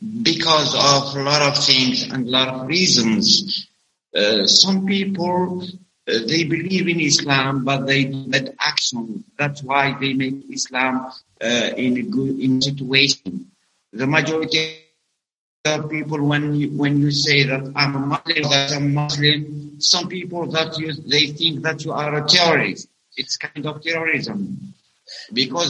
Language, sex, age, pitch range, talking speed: English, male, 60-79, 140-165 Hz, 160 wpm